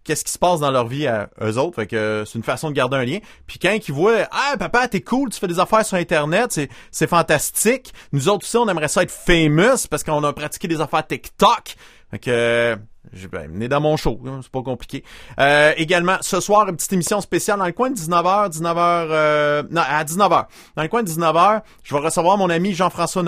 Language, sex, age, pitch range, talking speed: French, male, 30-49, 130-175 Hz, 235 wpm